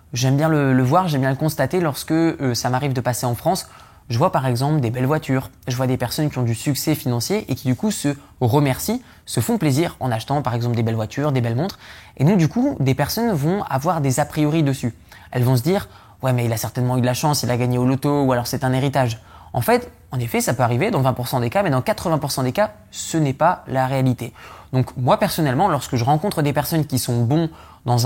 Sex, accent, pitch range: male, French, 125-165 Hz